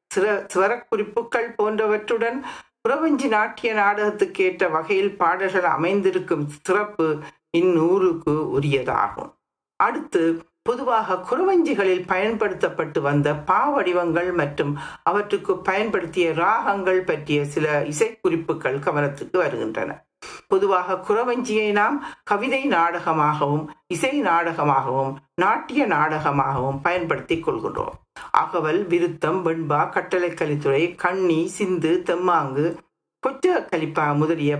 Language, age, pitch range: Tamil, 60-79, 165-220 Hz